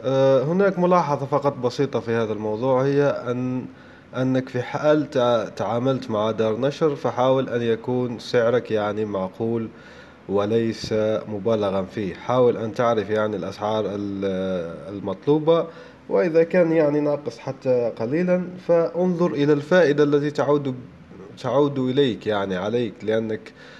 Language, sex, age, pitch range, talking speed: Arabic, male, 20-39, 115-145 Hz, 120 wpm